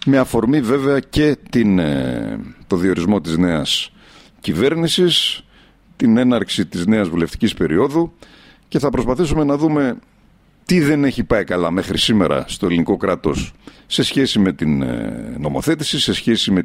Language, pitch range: Greek, 95-155 Hz